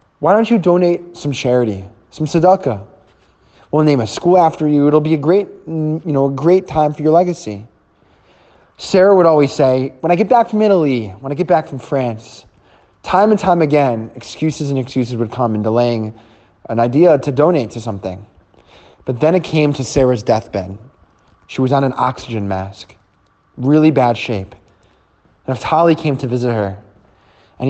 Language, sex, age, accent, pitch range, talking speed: English, male, 20-39, American, 110-155 Hz, 175 wpm